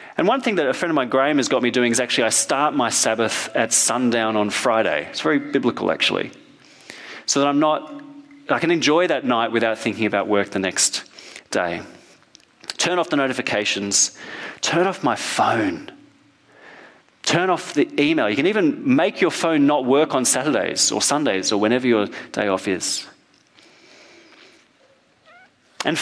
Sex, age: male, 30-49